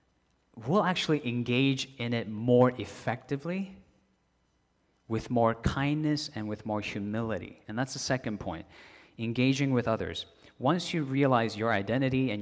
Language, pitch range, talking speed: English, 100-130 Hz, 135 wpm